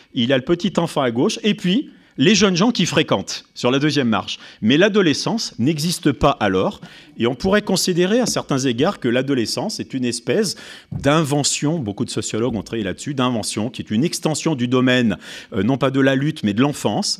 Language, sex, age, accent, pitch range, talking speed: French, male, 40-59, French, 110-160 Hz, 200 wpm